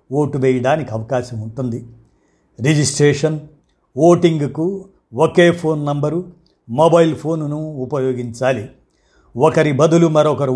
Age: 50-69